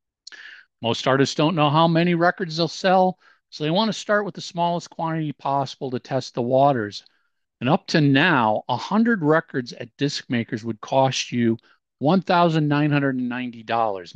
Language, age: English, 50-69